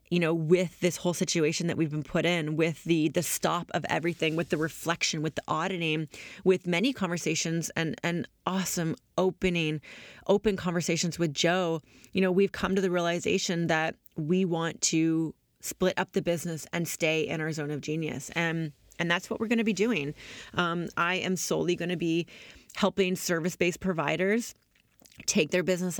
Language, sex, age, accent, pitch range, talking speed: English, female, 30-49, American, 160-185 Hz, 180 wpm